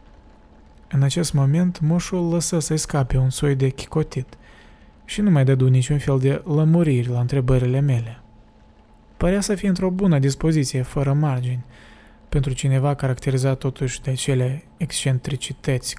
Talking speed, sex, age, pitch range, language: 140 wpm, male, 20-39, 130-150 Hz, Romanian